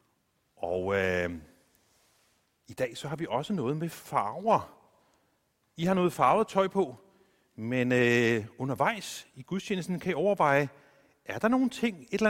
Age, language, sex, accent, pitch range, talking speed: 40-59, Danish, male, native, 115-190 Hz, 145 wpm